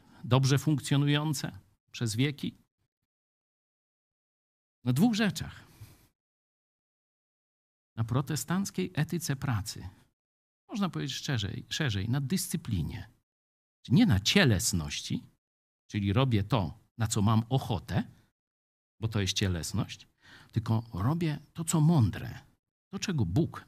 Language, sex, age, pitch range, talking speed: Polish, male, 50-69, 105-155 Hz, 100 wpm